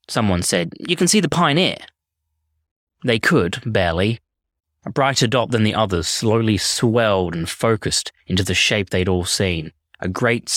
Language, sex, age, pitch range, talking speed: English, male, 20-39, 85-120 Hz, 160 wpm